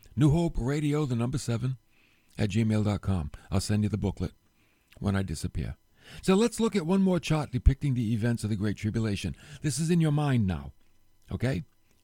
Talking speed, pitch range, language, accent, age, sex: 185 wpm, 100-130 Hz, English, American, 60-79, male